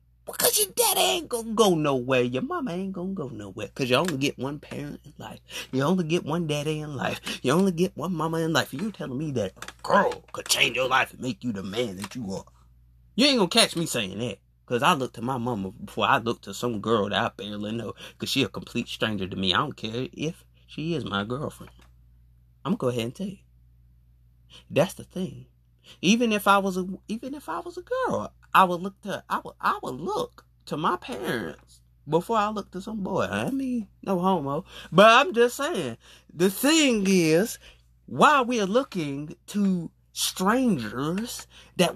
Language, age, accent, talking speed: English, 30-49, American, 215 wpm